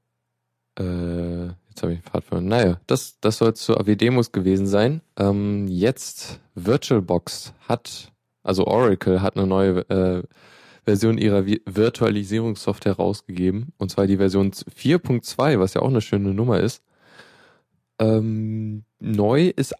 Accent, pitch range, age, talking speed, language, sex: German, 95-110 Hz, 20-39, 130 wpm, German, male